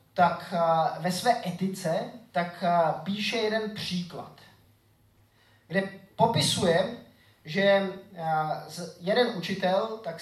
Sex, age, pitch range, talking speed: male, 20-39, 120-200 Hz, 80 wpm